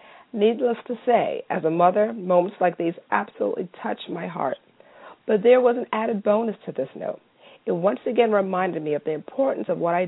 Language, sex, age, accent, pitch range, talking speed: English, female, 40-59, American, 170-230 Hz, 195 wpm